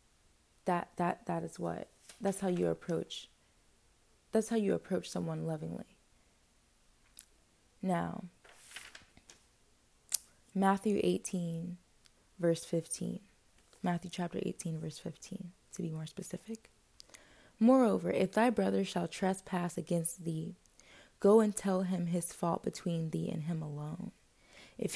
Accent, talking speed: American, 120 wpm